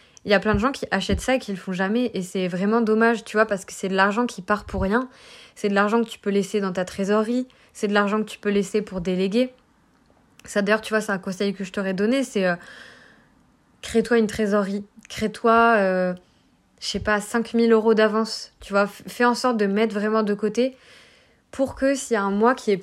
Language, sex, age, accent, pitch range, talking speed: French, female, 20-39, French, 195-230 Hz, 240 wpm